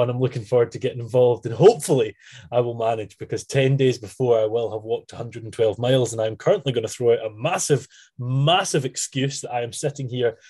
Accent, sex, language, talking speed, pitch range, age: British, male, English, 210 wpm, 120-145 Hz, 20-39